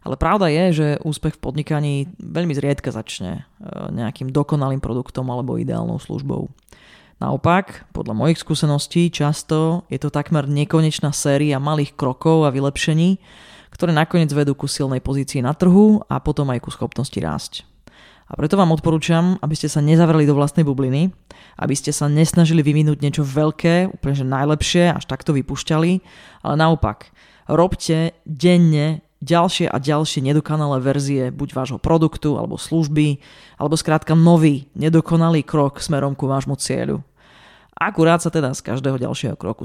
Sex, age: female, 30-49